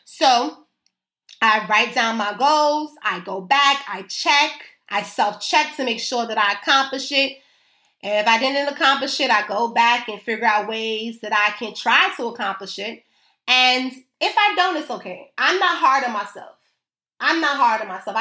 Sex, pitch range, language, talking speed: female, 215-300 Hz, English, 185 wpm